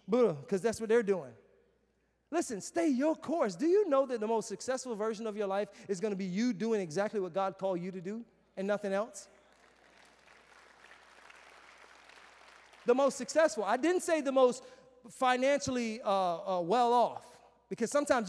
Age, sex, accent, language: 30-49, male, American, English